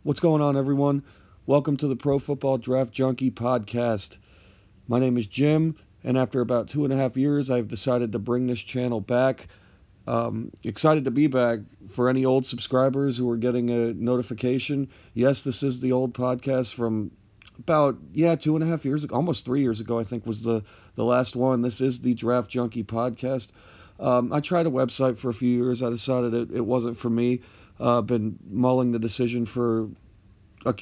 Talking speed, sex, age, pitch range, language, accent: 195 wpm, male, 40-59, 115-130 Hz, English, American